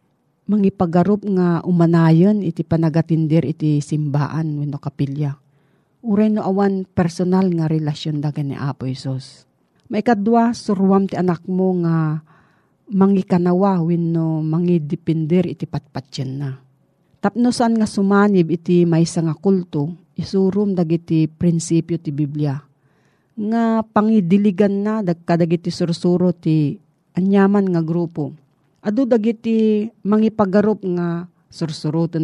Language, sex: Filipino, female